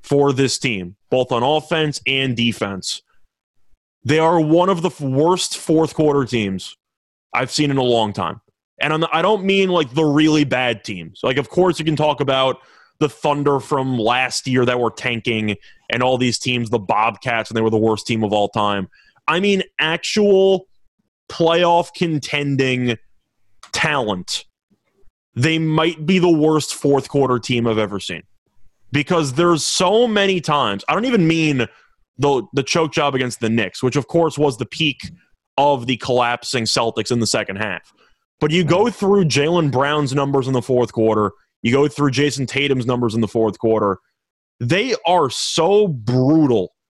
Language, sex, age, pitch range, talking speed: English, male, 20-39, 120-160 Hz, 170 wpm